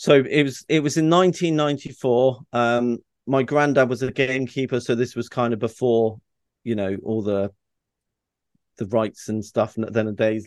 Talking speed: 180 wpm